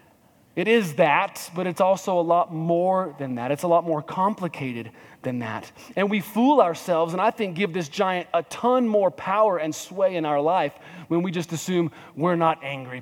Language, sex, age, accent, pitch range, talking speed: English, male, 30-49, American, 145-205 Hz, 205 wpm